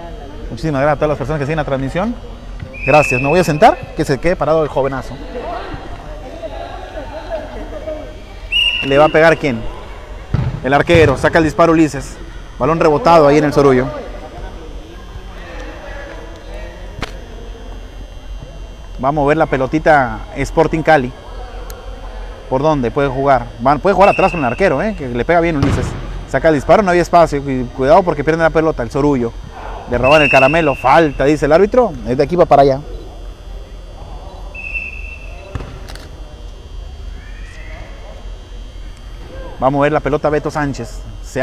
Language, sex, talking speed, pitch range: Spanish, male, 140 wpm, 100-150 Hz